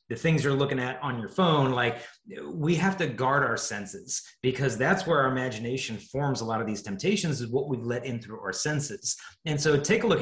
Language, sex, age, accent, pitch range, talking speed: English, male, 30-49, American, 125-170 Hz, 230 wpm